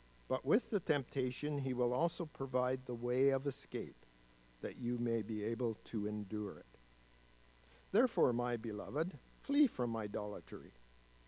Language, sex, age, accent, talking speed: English, male, 50-69, American, 140 wpm